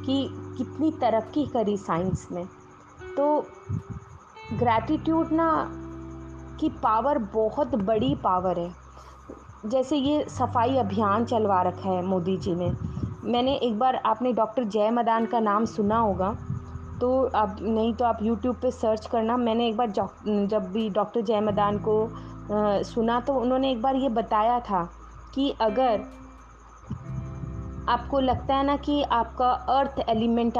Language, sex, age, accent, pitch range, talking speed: Hindi, female, 20-39, native, 205-250 Hz, 145 wpm